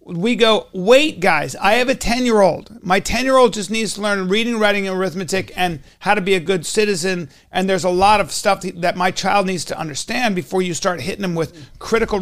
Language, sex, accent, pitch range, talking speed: English, male, American, 175-210 Hz, 235 wpm